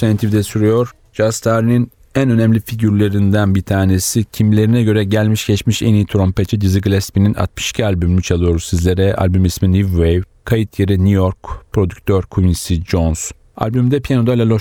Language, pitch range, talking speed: Turkish, 95-115 Hz, 145 wpm